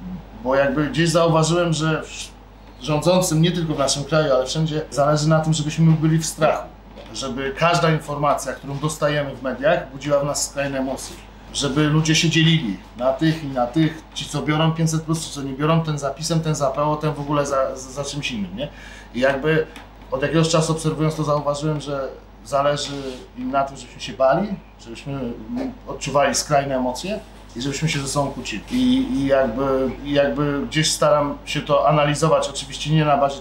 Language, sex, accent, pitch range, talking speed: Polish, male, native, 135-160 Hz, 185 wpm